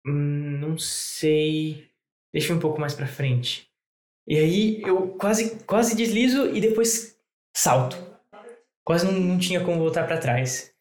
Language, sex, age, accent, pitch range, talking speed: English, male, 10-29, Brazilian, 150-190 Hz, 155 wpm